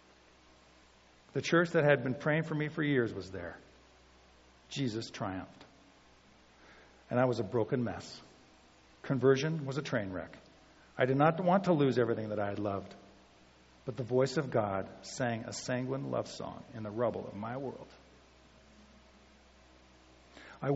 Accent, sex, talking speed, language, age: American, male, 155 wpm, English, 50-69